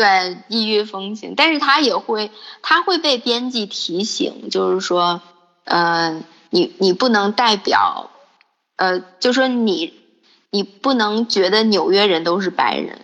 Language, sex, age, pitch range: Chinese, female, 20-39, 195-295 Hz